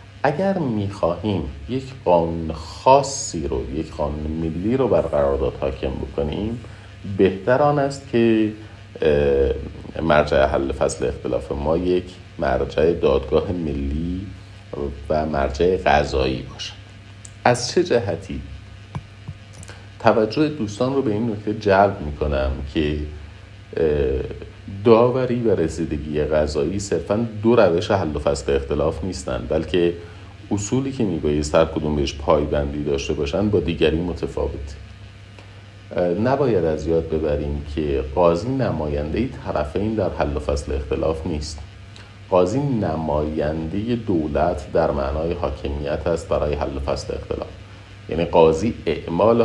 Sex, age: male, 50-69